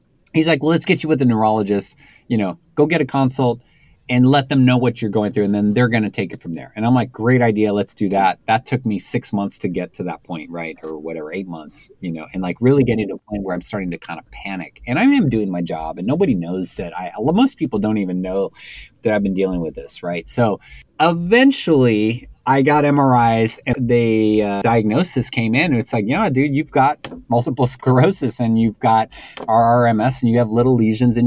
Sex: male